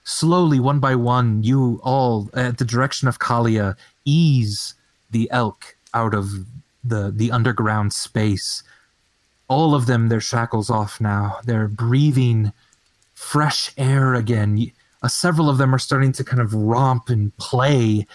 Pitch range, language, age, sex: 110-135 Hz, English, 30-49, male